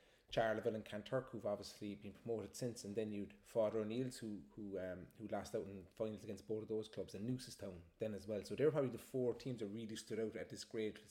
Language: English